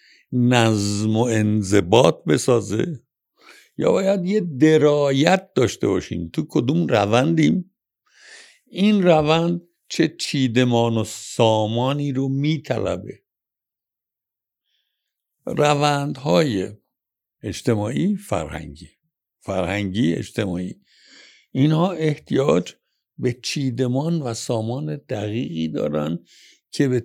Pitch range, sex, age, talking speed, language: 105-150 Hz, male, 60-79, 80 wpm, Persian